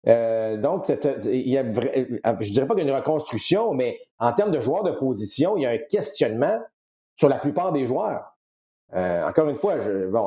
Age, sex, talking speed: 50-69, male, 230 wpm